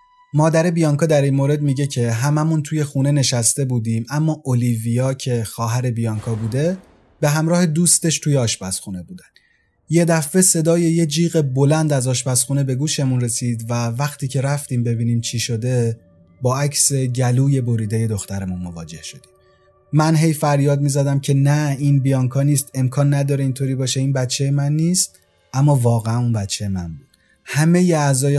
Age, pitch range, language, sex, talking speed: 30-49, 115-145 Hz, Persian, male, 155 wpm